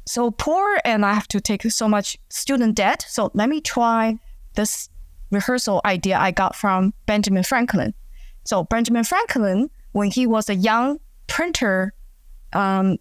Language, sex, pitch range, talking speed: English, female, 200-245 Hz, 150 wpm